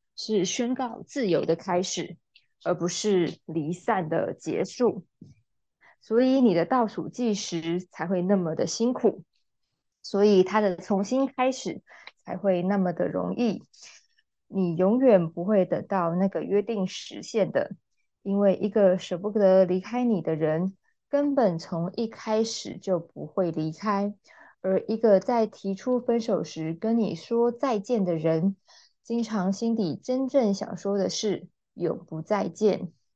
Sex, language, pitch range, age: female, Chinese, 180-225 Hz, 20-39